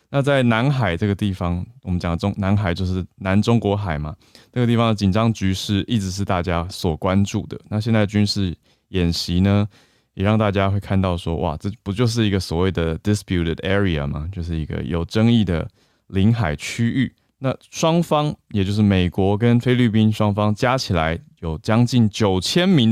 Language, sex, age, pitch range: Chinese, male, 20-39, 90-115 Hz